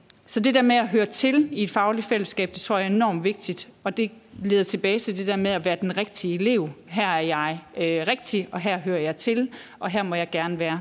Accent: native